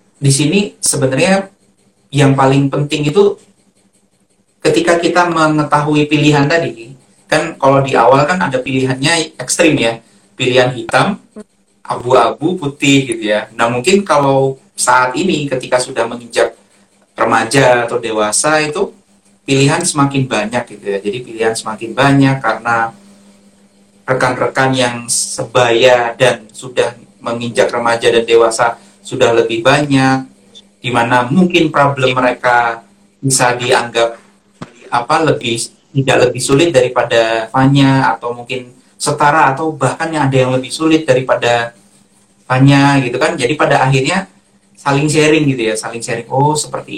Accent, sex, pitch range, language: native, male, 115-140 Hz, Indonesian